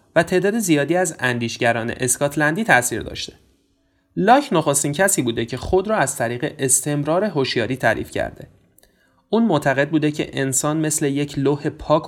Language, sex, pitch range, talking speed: Persian, male, 120-160 Hz, 150 wpm